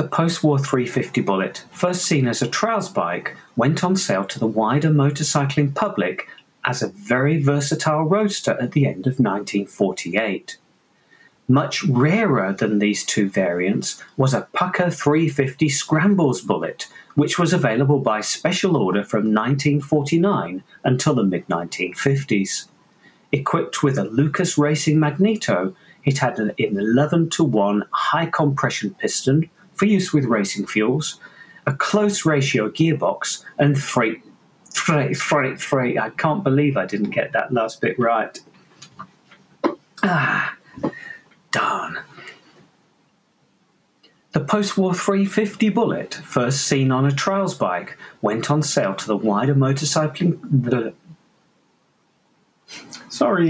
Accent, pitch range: British, 130-175 Hz